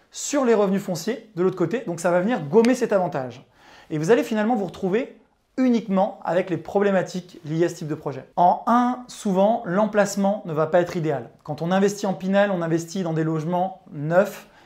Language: French